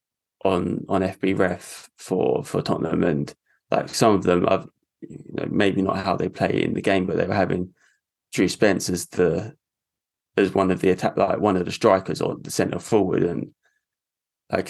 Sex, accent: male, British